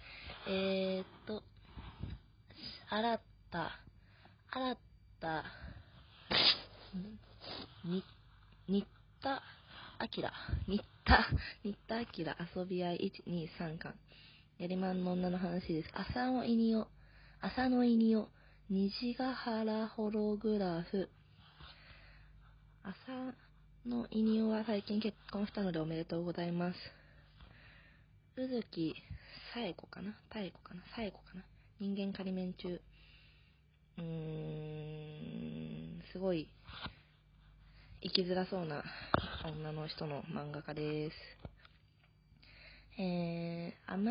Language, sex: Japanese, female